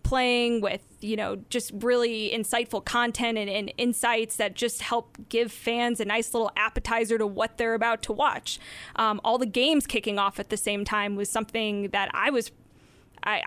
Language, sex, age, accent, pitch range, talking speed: English, female, 20-39, American, 210-235 Hz, 185 wpm